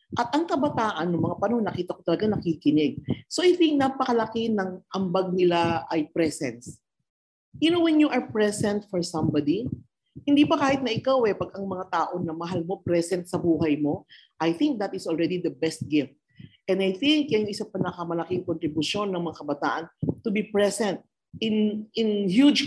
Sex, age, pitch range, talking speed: female, 40-59, 170-230 Hz, 180 wpm